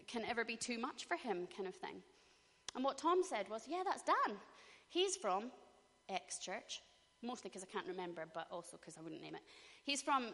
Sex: female